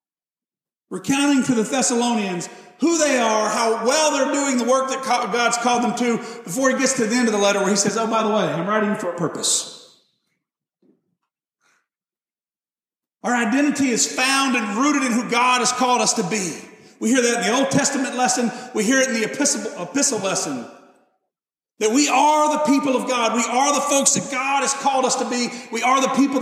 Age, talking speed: 40-59, 205 wpm